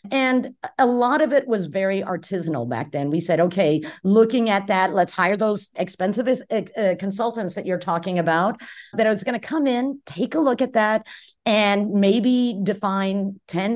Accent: American